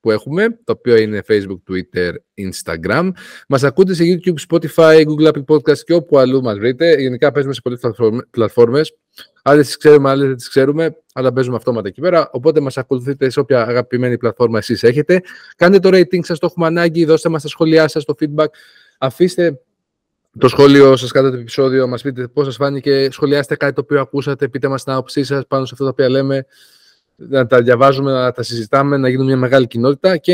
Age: 20-39